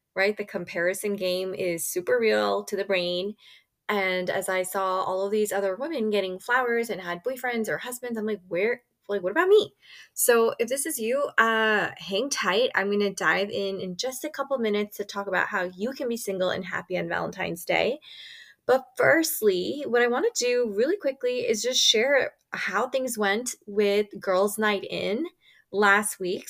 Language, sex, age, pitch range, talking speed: English, female, 20-39, 190-245 Hz, 195 wpm